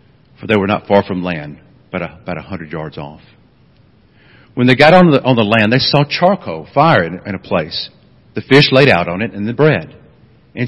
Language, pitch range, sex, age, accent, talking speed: English, 100-140 Hz, male, 50-69, American, 215 wpm